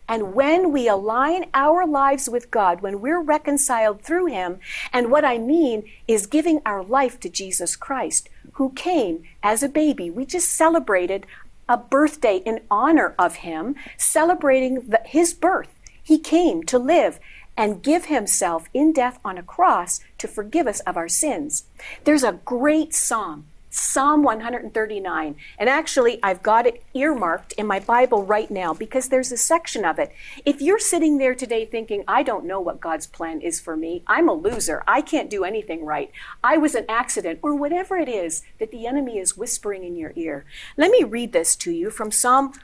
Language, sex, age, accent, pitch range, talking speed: English, female, 50-69, American, 205-305 Hz, 180 wpm